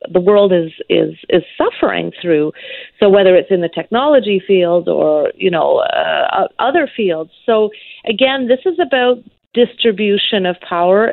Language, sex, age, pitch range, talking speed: English, female, 40-59, 190-255 Hz, 150 wpm